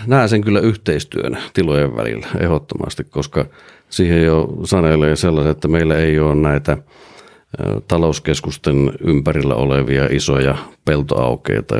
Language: Finnish